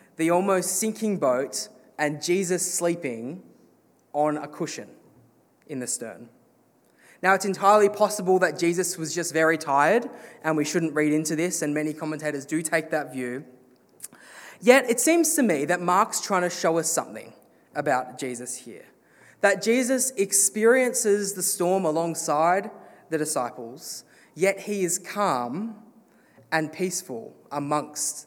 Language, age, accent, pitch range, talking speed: English, 20-39, Australian, 150-195 Hz, 140 wpm